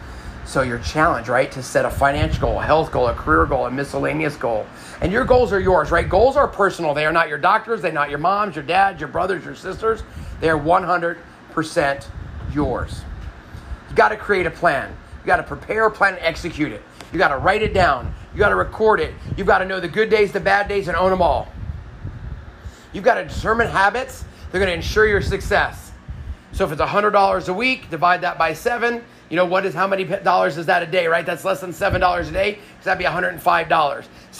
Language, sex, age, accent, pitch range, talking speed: English, male, 30-49, American, 150-190 Hz, 225 wpm